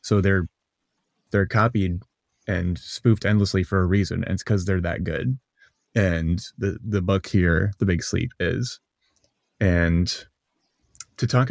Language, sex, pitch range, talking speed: English, male, 95-110 Hz, 145 wpm